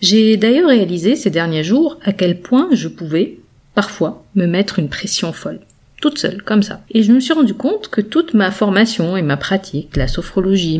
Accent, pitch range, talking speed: French, 175-225 Hz, 200 wpm